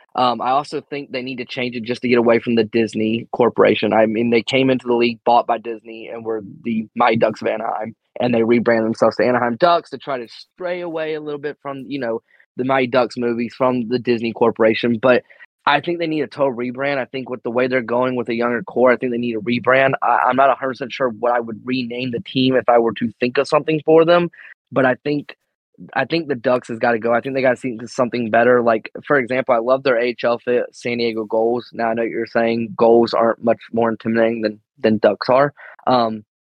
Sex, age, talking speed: male, 20-39, 245 wpm